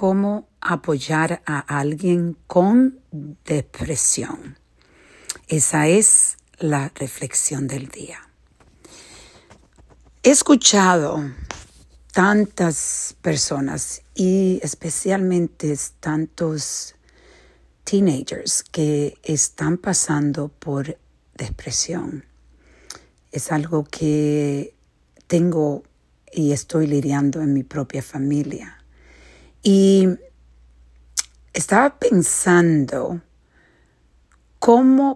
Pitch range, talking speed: 140-185 Hz, 70 wpm